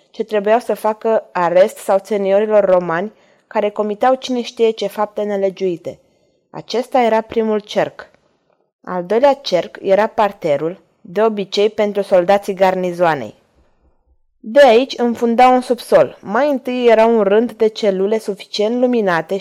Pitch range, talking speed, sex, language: 195-235 Hz, 135 wpm, female, Romanian